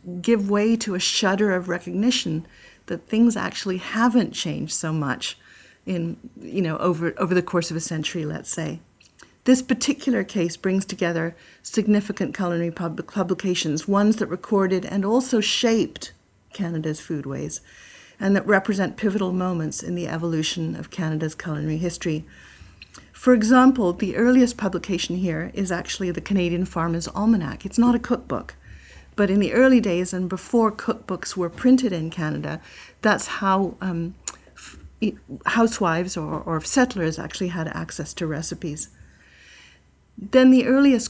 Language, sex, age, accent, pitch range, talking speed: English, female, 50-69, American, 165-210 Hz, 145 wpm